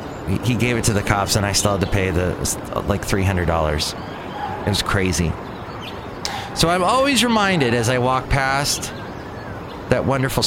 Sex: male